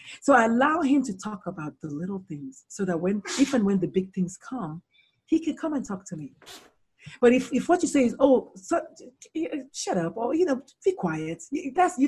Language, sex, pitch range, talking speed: English, female, 175-245 Hz, 225 wpm